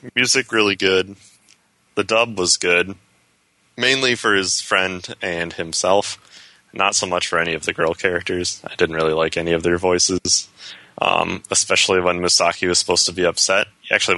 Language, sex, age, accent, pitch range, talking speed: English, male, 20-39, American, 85-115 Hz, 170 wpm